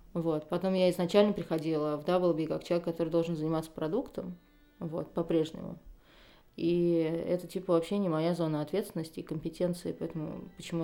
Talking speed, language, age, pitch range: 150 wpm, Russian, 20-39, 160-185 Hz